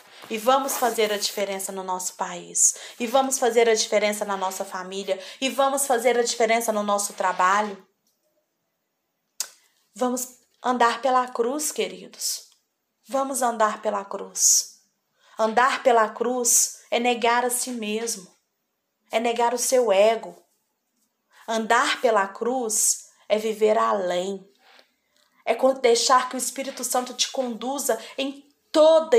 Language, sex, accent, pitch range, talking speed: Portuguese, female, Brazilian, 200-245 Hz, 125 wpm